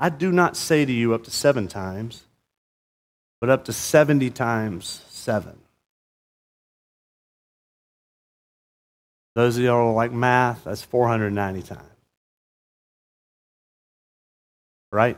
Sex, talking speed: male, 100 wpm